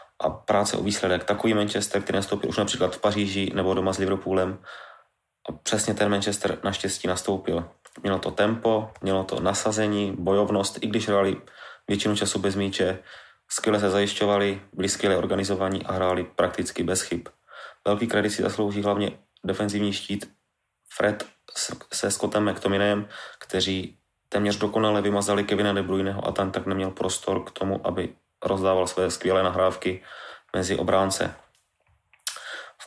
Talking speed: 145 wpm